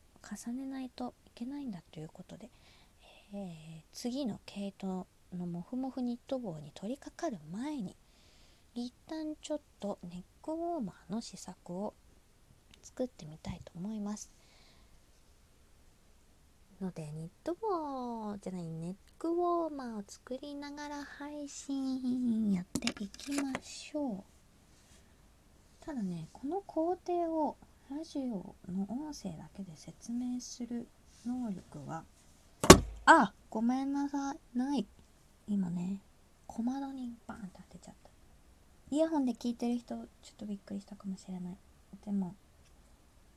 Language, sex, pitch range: Japanese, female, 185-270 Hz